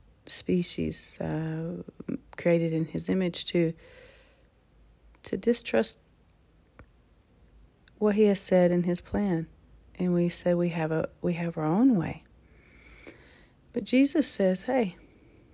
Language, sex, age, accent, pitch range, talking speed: English, female, 40-59, American, 115-185 Hz, 120 wpm